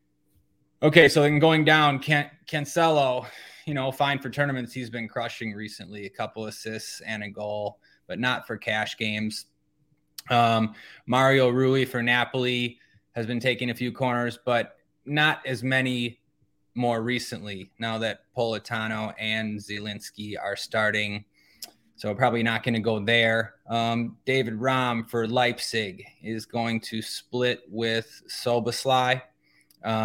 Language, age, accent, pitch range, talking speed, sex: English, 20-39, American, 110-130 Hz, 135 wpm, male